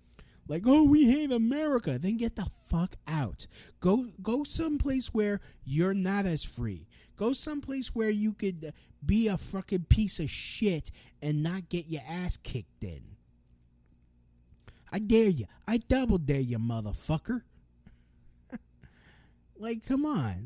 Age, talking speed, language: 20-39, 140 wpm, English